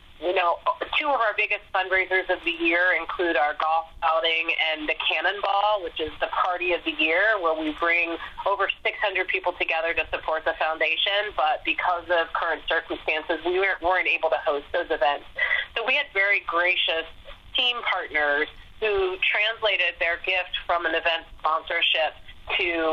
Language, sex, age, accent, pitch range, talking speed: English, female, 30-49, American, 160-195 Hz, 165 wpm